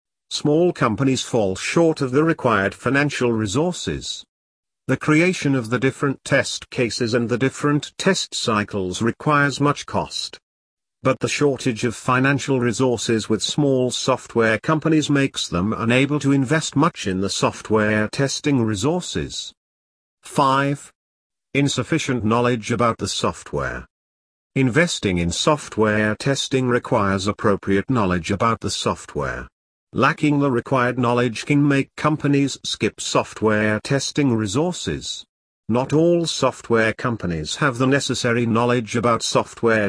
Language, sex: English, male